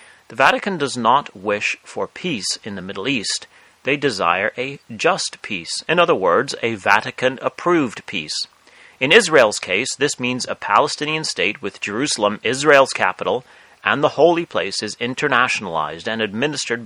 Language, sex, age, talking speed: English, male, 30-49, 150 wpm